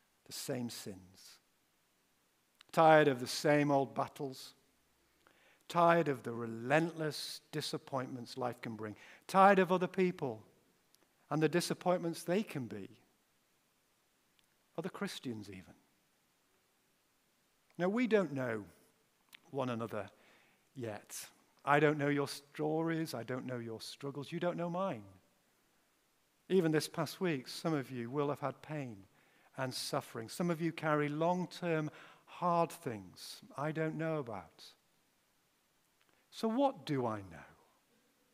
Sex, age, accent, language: male, 50-69, British, English